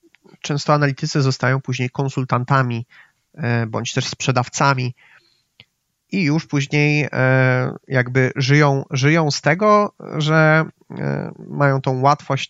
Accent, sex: native, male